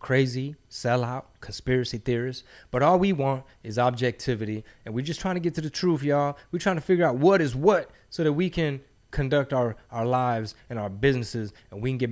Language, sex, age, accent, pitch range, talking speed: English, male, 20-39, American, 115-155 Hz, 215 wpm